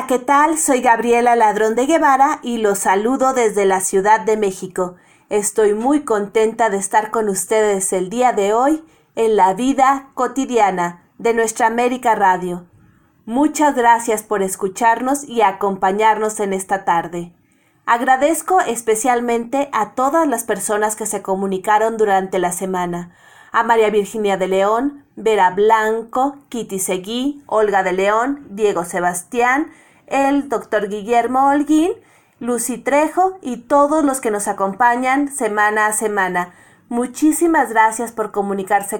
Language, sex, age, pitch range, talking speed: Spanish, female, 30-49, 200-255 Hz, 135 wpm